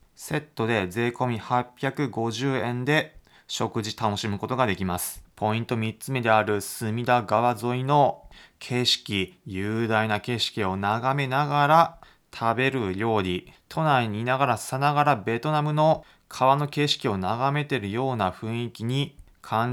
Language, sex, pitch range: Japanese, male, 105-135 Hz